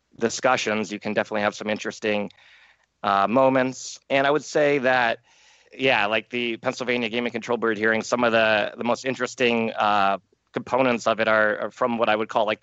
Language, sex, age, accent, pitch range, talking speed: English, male, 30-49, American, 105-120 Hz, 190 wpm